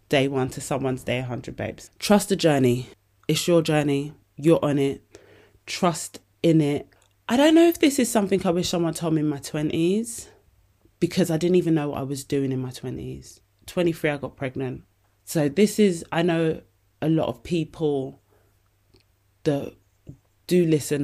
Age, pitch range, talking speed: 20-39, 125-160 Hz, 175 wpm